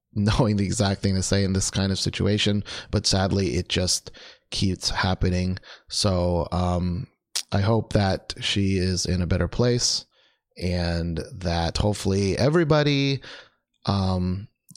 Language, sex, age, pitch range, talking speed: English, male, 30-49, 90-120 Hz, 135 wpm